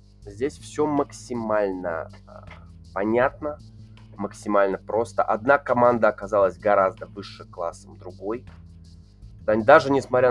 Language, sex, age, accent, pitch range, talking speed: Russian, male, 20-39, native, 100-130 Hz, 85 wpm